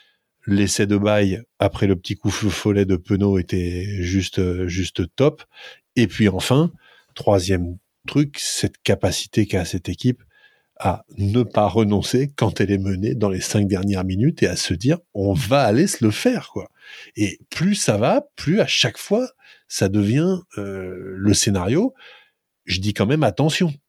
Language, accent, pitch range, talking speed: French, French, 100-130 Hz, 165 wpm